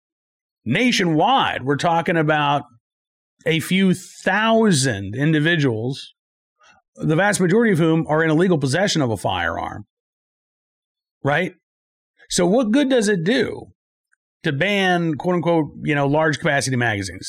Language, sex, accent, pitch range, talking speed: English, male, American, 140-180 Hz, 120 wpm